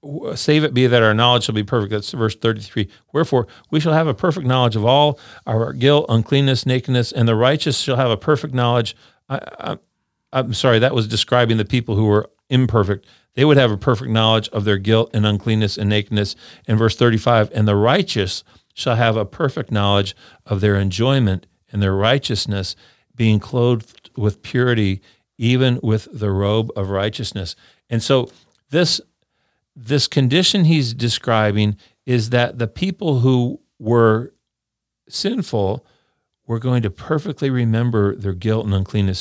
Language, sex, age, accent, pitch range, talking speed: English, male, 50-69, American, 105-130 Hz, 160 wpm